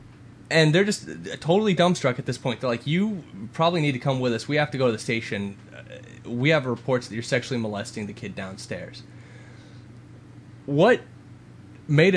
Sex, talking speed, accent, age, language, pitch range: male, 180 wpm, American, 10-29, English, 115-140 Hz